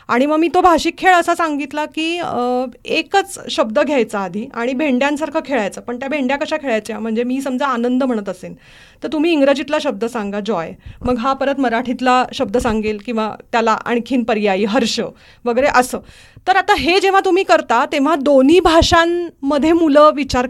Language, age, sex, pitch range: Marathi, 30-49, female, 245-330 Hz